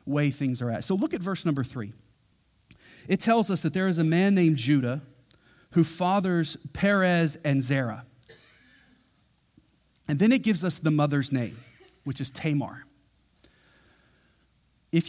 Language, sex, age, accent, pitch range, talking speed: English, male, 40-59, American, 135-170 Hz, 145 wpm